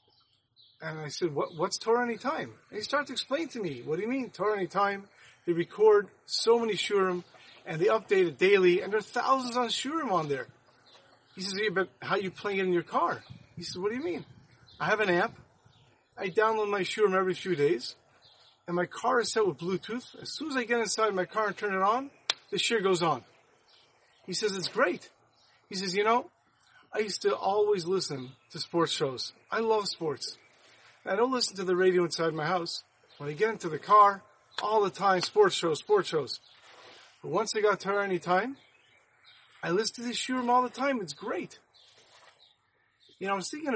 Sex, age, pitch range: male, 30-49, 175-225 Hz